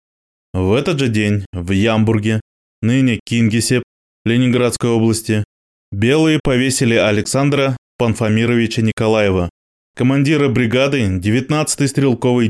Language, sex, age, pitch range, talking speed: Russian, male, 20-39, 105-145 Hz, 90 wpm